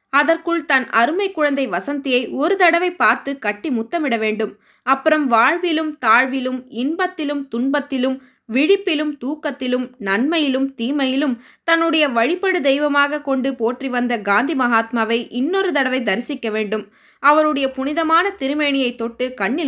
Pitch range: 230-295 Hz